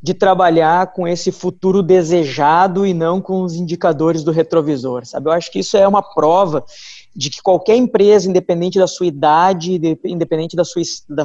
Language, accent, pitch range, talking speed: Portuguese, Brazilian, 170-210 Hz, 180 wpm